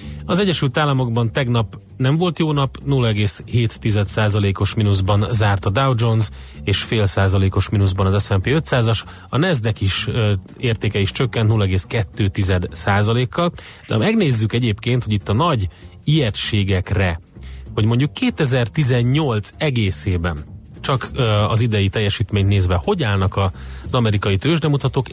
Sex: male